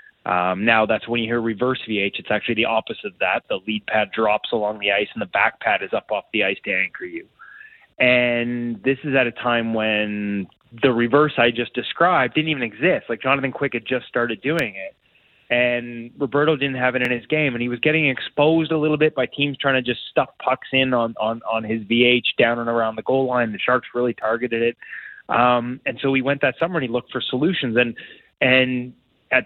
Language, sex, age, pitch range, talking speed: English, male, 20-39, 115-135 Hz, 225 wpm